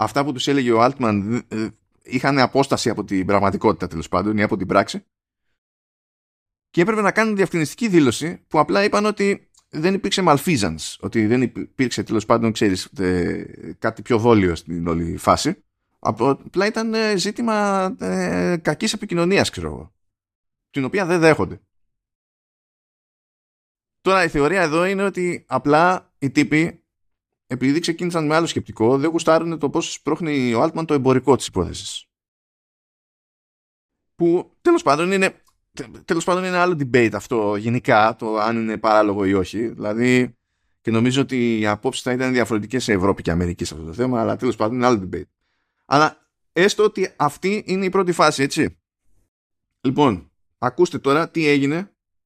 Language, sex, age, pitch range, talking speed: Greek, male, 20-39, 100-160 Hz, 155 wpm